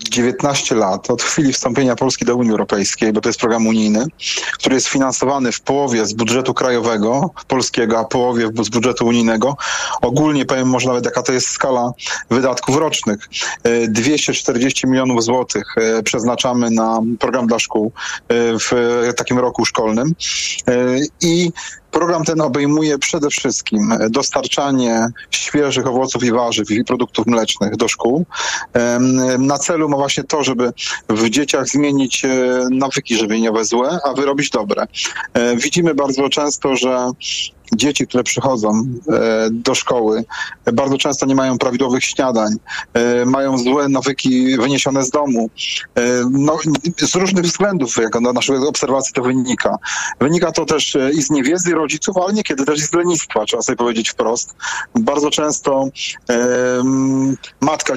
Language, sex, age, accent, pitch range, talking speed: Polish, male, 30-49, native, 120-140 Hz, 140 wpm